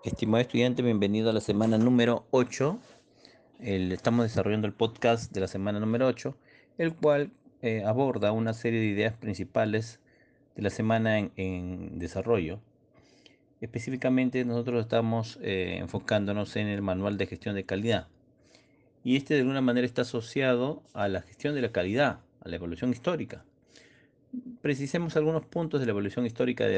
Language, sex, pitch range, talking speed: Spanish, male, 105-125 Hz, 155 wpm